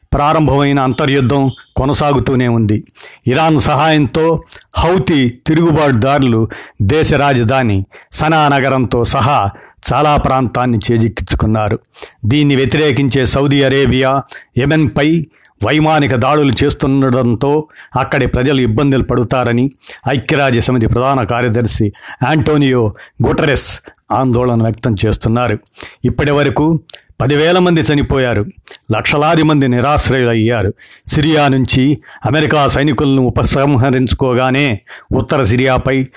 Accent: native